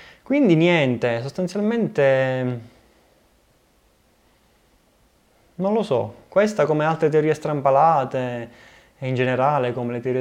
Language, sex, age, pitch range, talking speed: Italian, male, 20-39, 120-145 Hz, 100 wpm